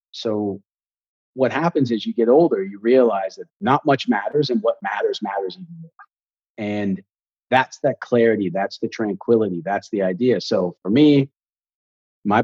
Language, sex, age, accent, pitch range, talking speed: English, male, 40-59, American, 100-135 Hz, 160 wpm